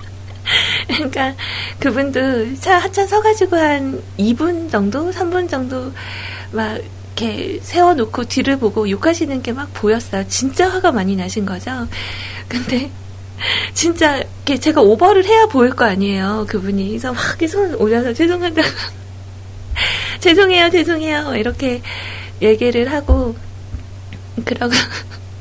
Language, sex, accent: Korean, female, native